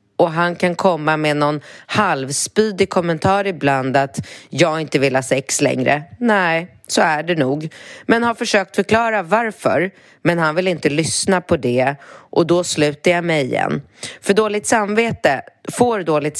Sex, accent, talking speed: female, native, 160 wpm